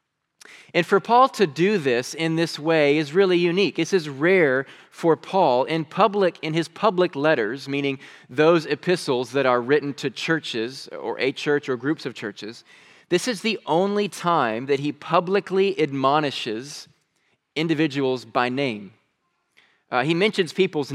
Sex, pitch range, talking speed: male, 140-190 Hz, 155 wpm